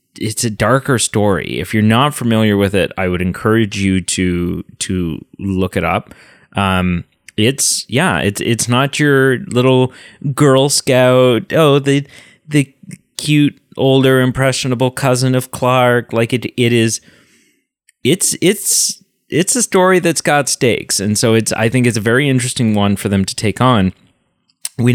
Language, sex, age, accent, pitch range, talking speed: English, male, 30-49, American, 95-135 Hz, 160 wpm